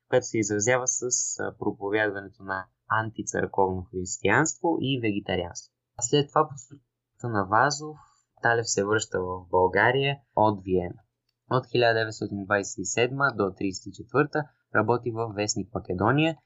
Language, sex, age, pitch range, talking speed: Bulgarian, male, 20-39, 100-130 Hz, 115 wpm